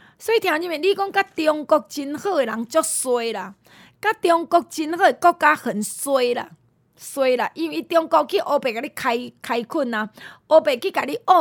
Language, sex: Chinese, female